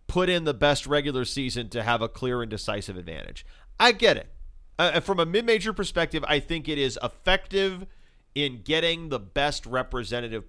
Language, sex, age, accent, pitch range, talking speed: English, male, 40-59, American, 120-165 Hz, 175 wpm